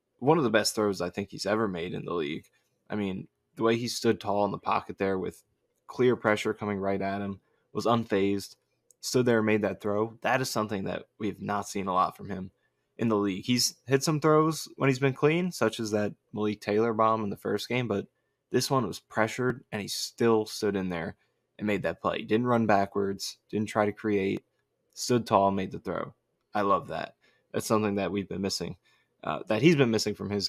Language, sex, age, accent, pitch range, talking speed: English, male, 20-39, American, 100-115 Hz, 225 wpm